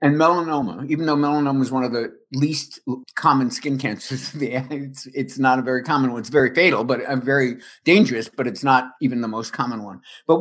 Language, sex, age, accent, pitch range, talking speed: English, male, 60-79, American, 135-185 Hz, 200 wpm